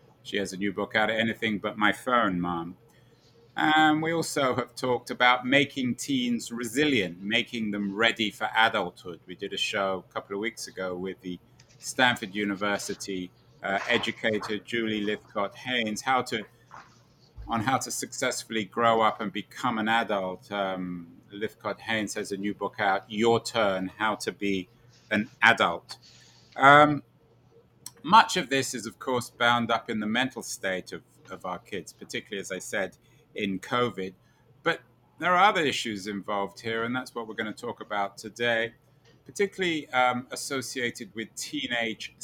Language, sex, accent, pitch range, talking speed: English, male, British, 105-125 Hz, 160 wpm